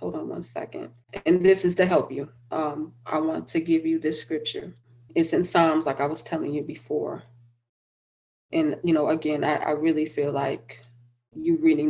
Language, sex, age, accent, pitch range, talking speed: English, female, 20-39, American, 120-160 Hz, 190 wpm